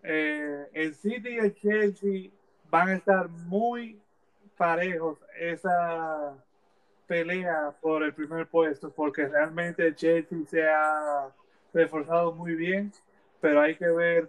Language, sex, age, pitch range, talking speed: Spanish, male, 30-49, 150-180 Hz, 125 wpm